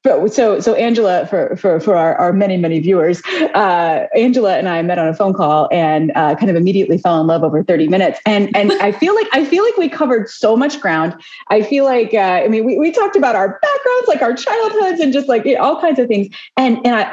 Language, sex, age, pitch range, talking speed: English, female, 30-49, 175-260 Hz, 250 wpm